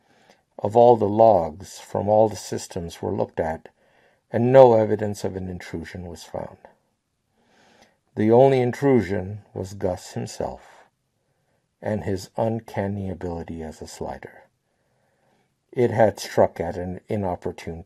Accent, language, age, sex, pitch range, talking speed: American, English, 60-79, male, 95-115 Hz, 130 wpm